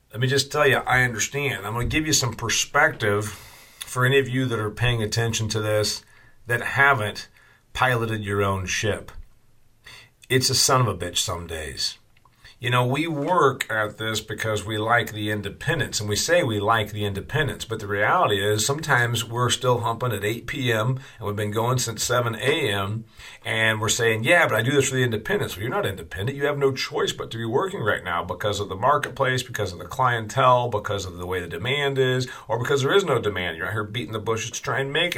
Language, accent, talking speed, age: English, American, 220 wpm, 40-59